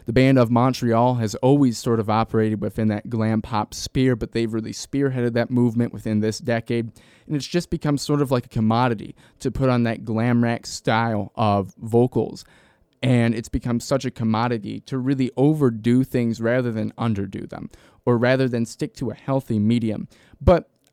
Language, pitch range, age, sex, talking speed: English, 115-140 Hz, 20-39, male, 185 wpm